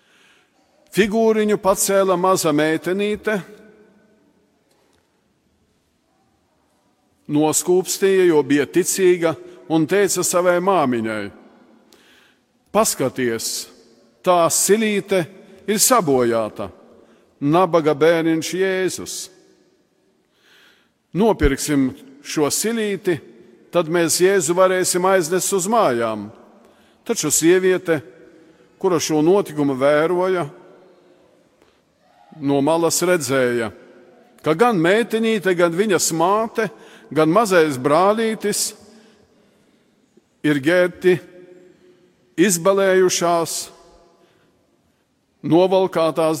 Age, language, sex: 50-69, English, male